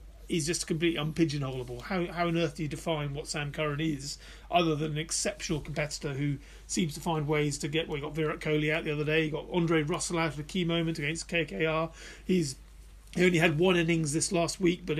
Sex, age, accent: male, 30-49, British